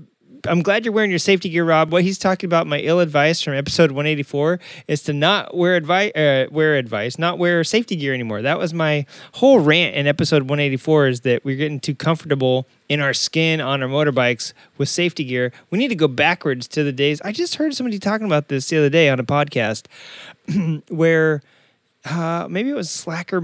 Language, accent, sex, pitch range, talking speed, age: English, American, male, 140-175 Hz, 205 wpm, 30-49